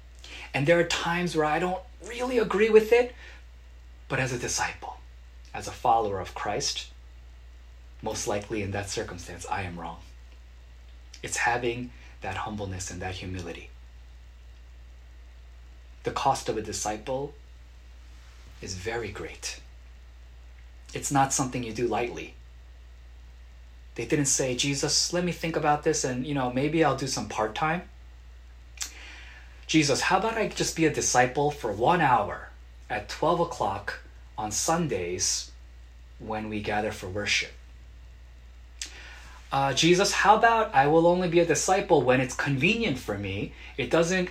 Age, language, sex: 30-49, Korean, male